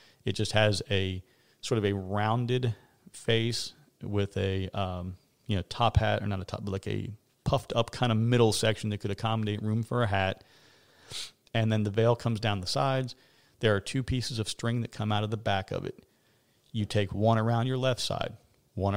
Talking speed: 210 wpm